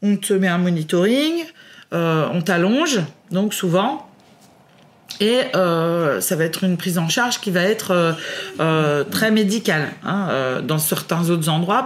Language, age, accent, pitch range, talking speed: French, 30-49, French, 170-220 Hz, 150 wpm